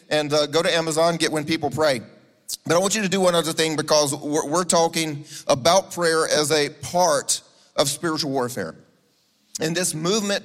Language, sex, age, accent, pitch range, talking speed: English, male, 40-59, American, 130-155 Hz, 190 wpm